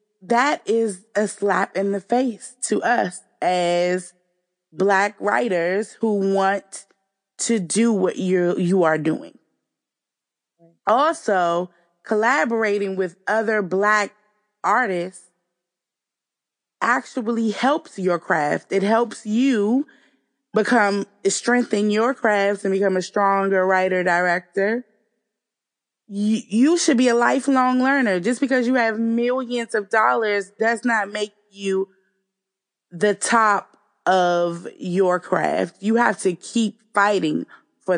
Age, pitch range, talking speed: 20-39, 190-225 Hz, 115 wpm